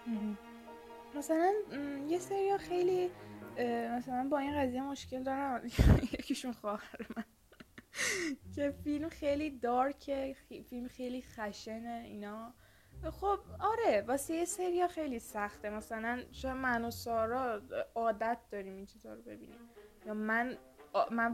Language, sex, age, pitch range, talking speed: Persian, female, 10-29, 215-275 Hz, 110 wpm